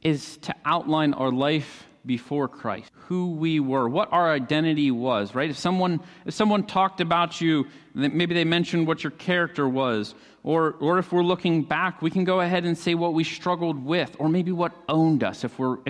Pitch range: 130-170 Hz